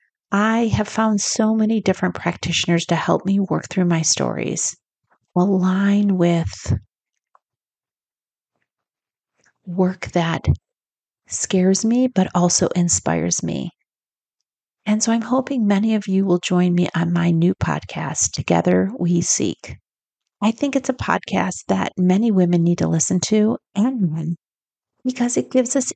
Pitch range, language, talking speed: 170-215 Hz, English, 135 wpm